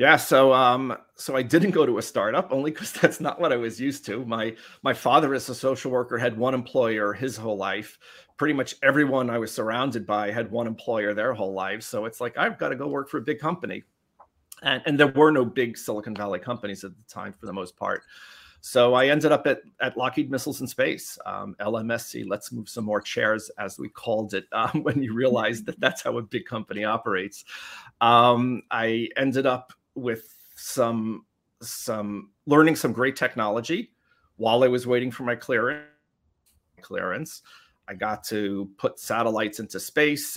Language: English